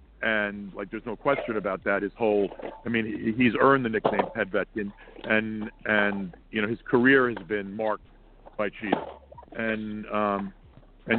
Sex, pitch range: male, 110-135 Hz